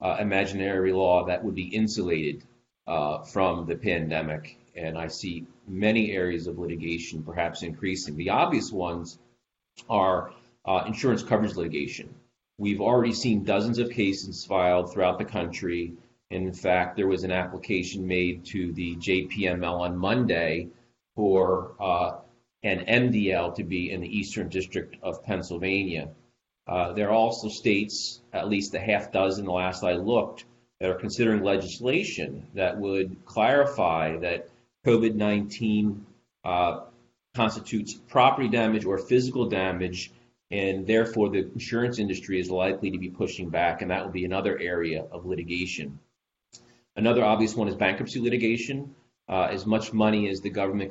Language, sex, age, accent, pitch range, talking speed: English, male, 40-59, American, 90-110 Hz, 145 wpm